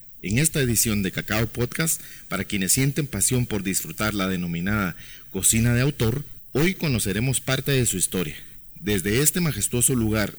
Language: Spanish